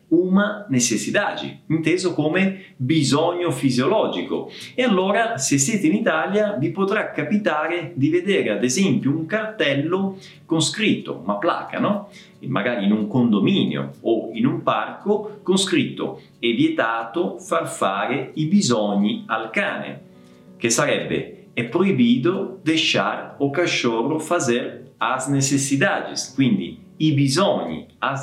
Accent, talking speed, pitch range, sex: native, 125 wpm, 130-195 Hz, male